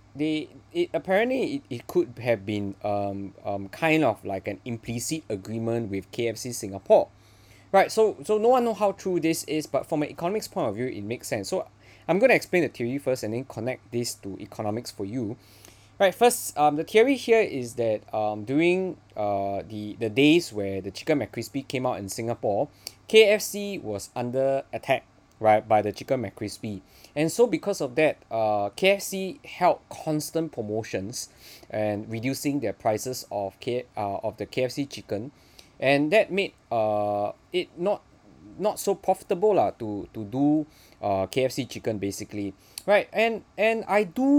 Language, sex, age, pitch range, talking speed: English, male, 20-39, 105-165 Hz, 175 wpm